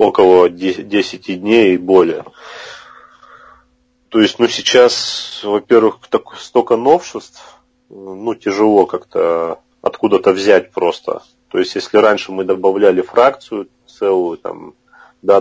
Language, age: Russian, 30-49